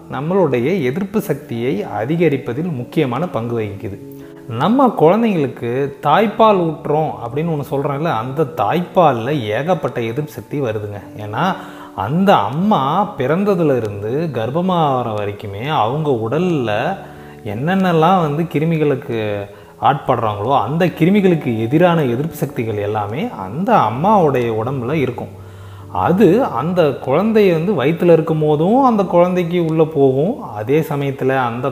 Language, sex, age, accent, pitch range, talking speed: Tamil, male, 30-49, native, 120-175 Hz, 105 wpm